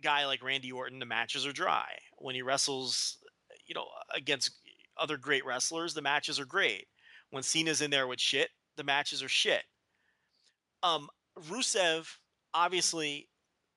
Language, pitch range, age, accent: English, 135-170 Hz, 30-49, American